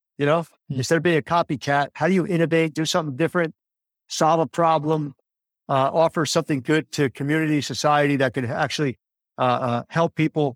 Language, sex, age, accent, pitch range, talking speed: English, male, 50-69, American, 140-165 Hz, 175 wpm